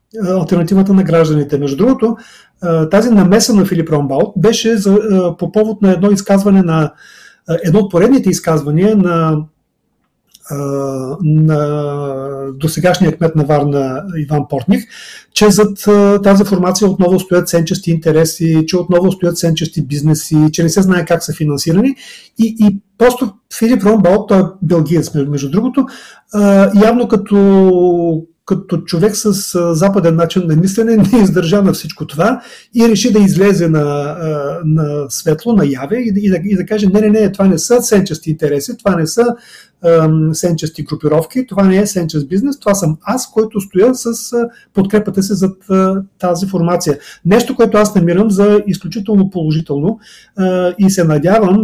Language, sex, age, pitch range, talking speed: Bulgarian, male, 40-59, 160-205 Hz, 150 wpm